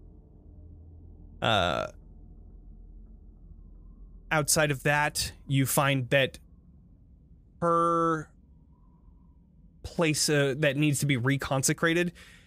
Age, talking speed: 20-39, 70 wpm